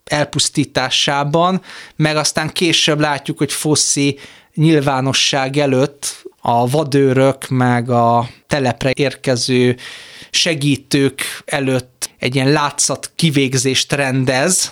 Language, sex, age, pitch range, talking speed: Hungarian, male, 30-49, 130-155 Hz, 90 wpm